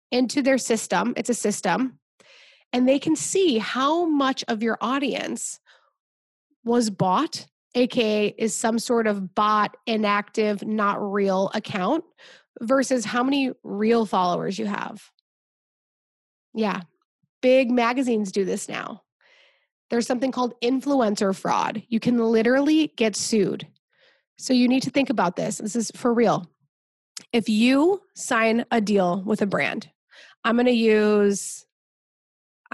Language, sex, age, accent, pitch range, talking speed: English, female, 20-39, American, 205-250 Hz, 135 wpm